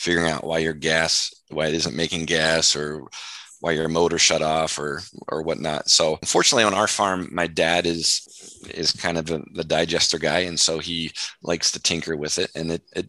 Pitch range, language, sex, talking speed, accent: 80-95 Hz, English, male, 205 wpm, American